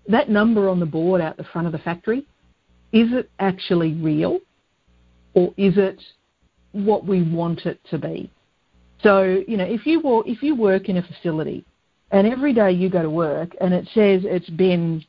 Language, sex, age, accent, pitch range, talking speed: English, female, 50-69, Australian, 170-210 Hz, 185 wpm